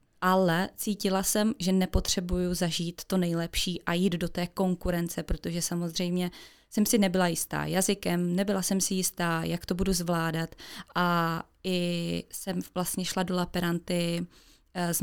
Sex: female